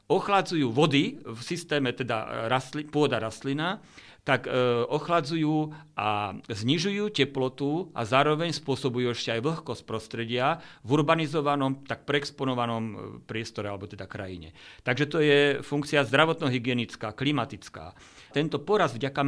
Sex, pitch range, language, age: male, 125-155 Hz, Slovak, 50-69